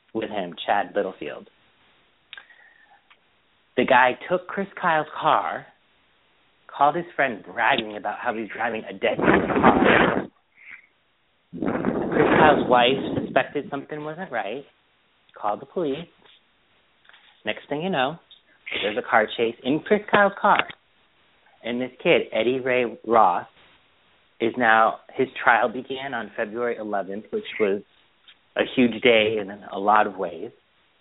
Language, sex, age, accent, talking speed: English, male, 40-59, American, 130 wpm